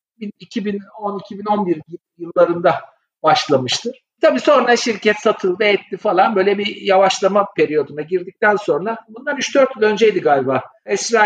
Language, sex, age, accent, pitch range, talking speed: Turkish, male, 50-69, native, 170-220 Hz, 125 wpm